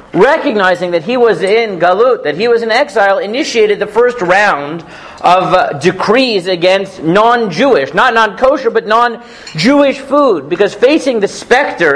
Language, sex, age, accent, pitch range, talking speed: English, male, 50-69, American, 185-240 Hz, 145 wpm